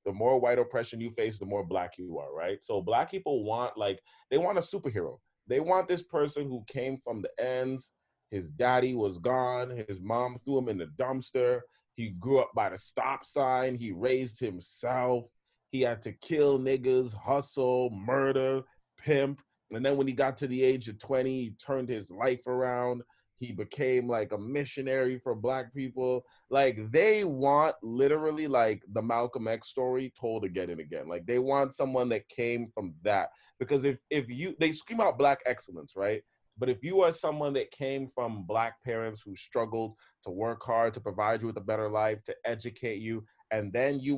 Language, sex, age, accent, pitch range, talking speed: English, male, 30-49, American, 115-135 Hz, 190 wpm